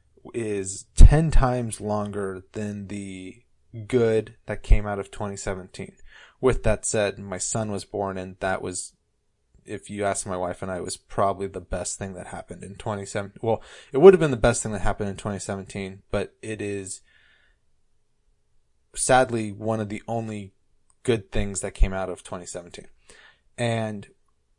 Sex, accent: male, American